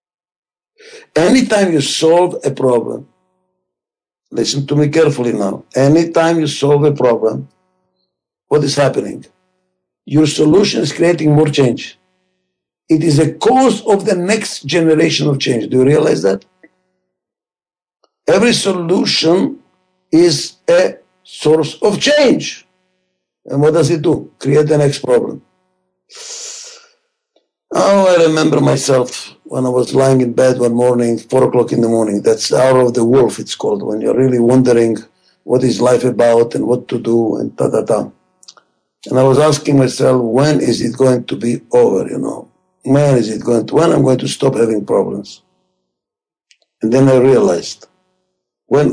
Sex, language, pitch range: male, English, 125-185 Hz